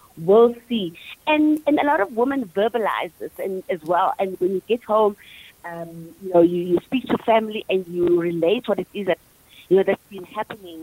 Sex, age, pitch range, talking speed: female, 30-49, 190-265 Hz, 210 wpm